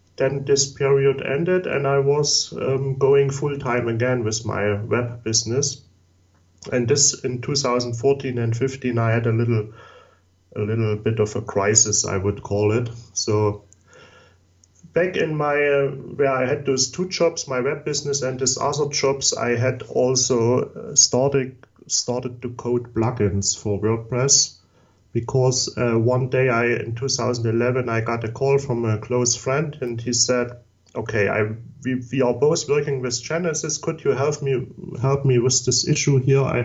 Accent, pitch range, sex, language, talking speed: German, 110-135 Hz, male, English, 165 wpm